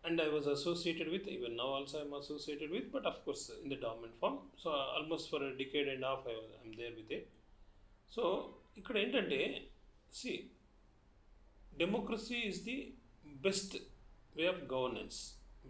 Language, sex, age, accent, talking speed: Telugu, male, 40-59, native, 175 wpm